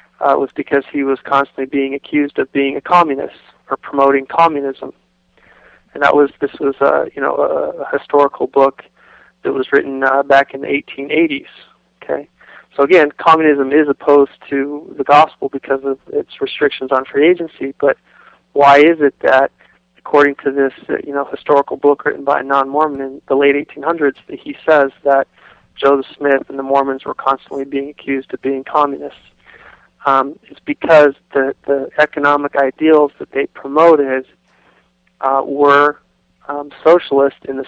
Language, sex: English, male